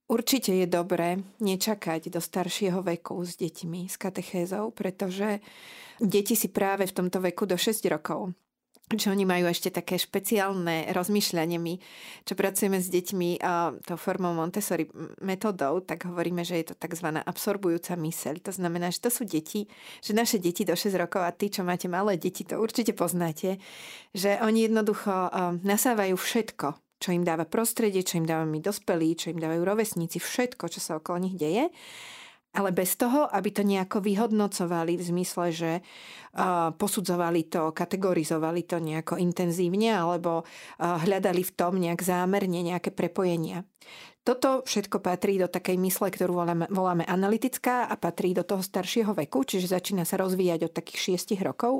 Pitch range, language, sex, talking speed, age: 175-205 Hz, Slovak, female, 160 wpm, 40-59